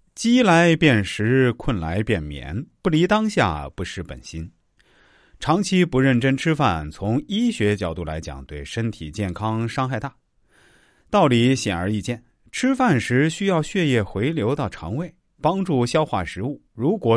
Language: Chinese